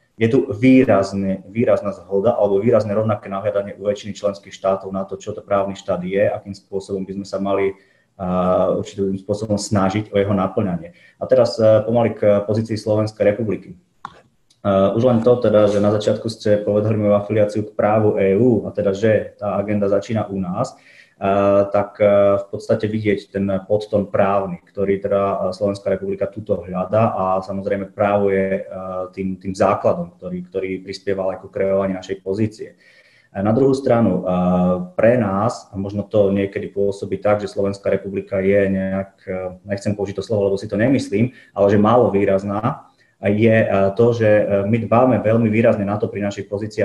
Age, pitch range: 20-39, 95-110 Hz